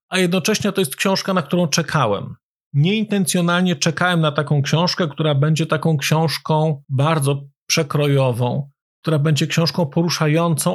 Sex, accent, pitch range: male, native, 145-170 Hz